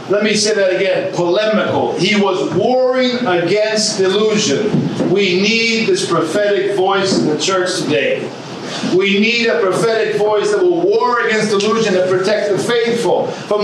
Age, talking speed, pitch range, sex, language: 50-69, 155 wpm, 185-225 Hz, male, English